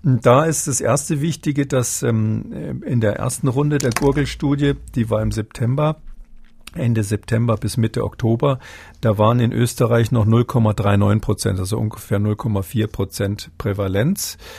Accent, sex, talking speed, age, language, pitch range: German, male, 140 wpm, 50-69, German, 105-130 Hz